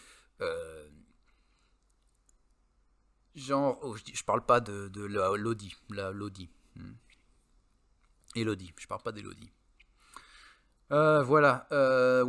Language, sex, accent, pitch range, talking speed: French, male, French, 110-140 Hz, 115 wpm